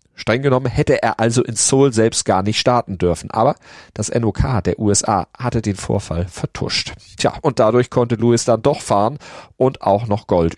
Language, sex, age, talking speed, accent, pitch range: German, male, 40-59, 185 wpm, German, 95-120 Hz